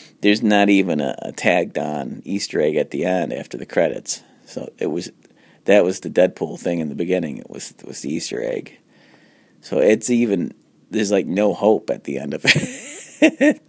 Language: English